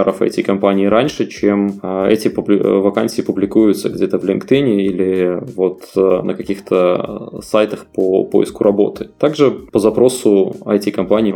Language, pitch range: Russian, 95-110 Hz